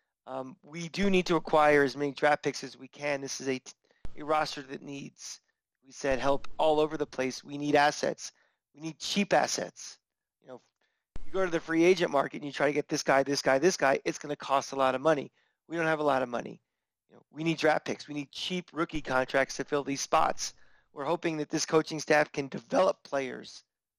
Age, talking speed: 30-49, 225 wpm